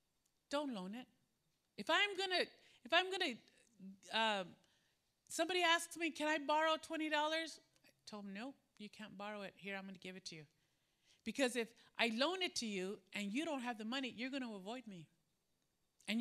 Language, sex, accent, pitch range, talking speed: English, female, American, 205-325 Hz, 195 wpm